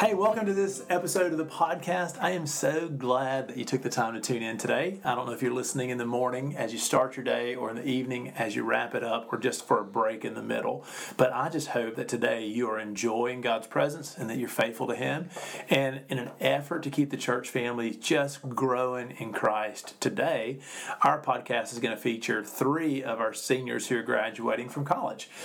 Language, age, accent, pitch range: English, 40-59, American, 120-140 Hz